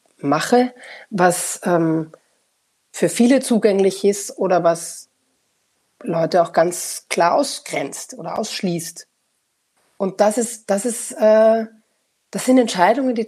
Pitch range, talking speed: 165-215 Hz, 95 wpm